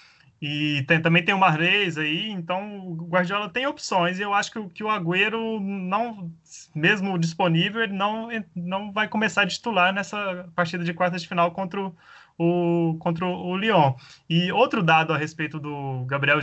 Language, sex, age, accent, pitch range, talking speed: Portuguese, male, 20-39, Brazilian, 155-195 Hz, 170 wpm